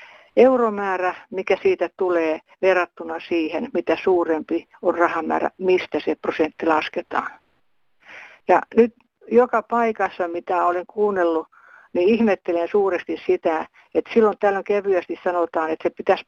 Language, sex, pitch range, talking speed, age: Finnish, female, 170-210 Hz, 120 wpm, 60-79